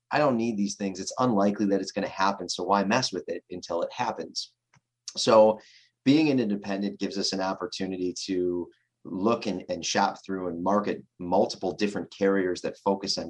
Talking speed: 190 wpm